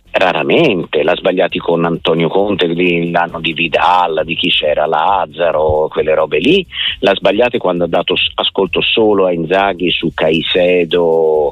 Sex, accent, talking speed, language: male, native, 140 wpm, Italian